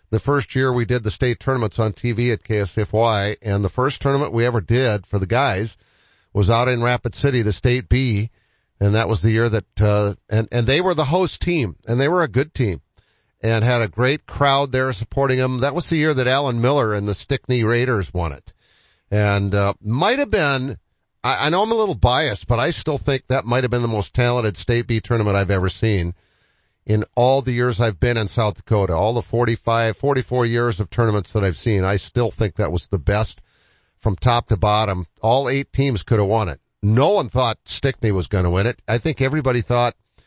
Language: English